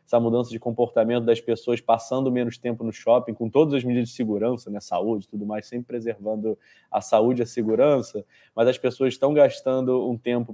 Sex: male